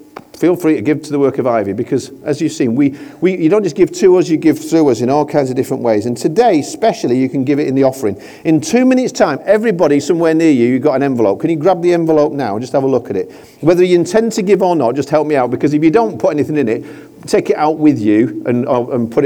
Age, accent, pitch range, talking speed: 40-59, British, 135-210 Hz, 295 wpm